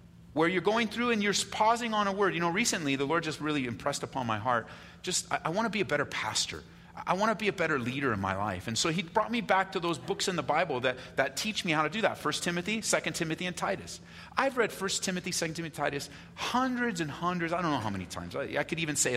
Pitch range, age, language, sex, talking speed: 120-190 Hz, 40-59, English, male, 280 wpm